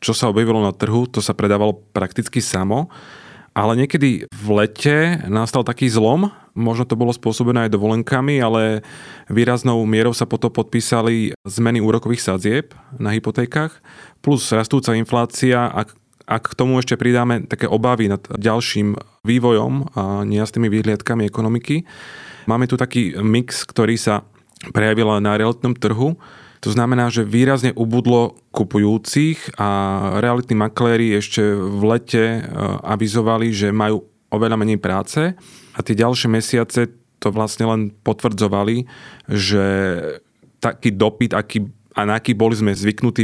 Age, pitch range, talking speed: 30-49, 105-125 Hz, 135 wpm